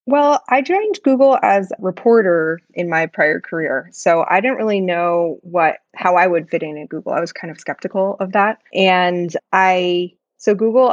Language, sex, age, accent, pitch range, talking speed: English, female, 20-39, American, 170-210 Hz, 190 wpm